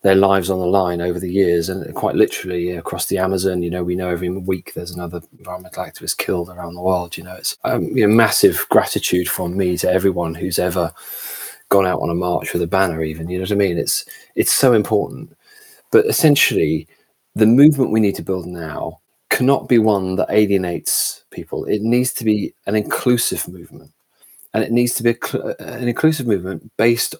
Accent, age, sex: British, 30-49, male